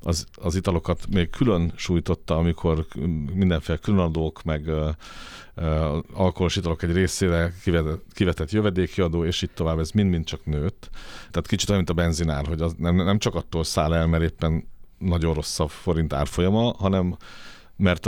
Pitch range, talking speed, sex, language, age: 80-95 Hz, 165 wpm, male, Hungarian, 50-69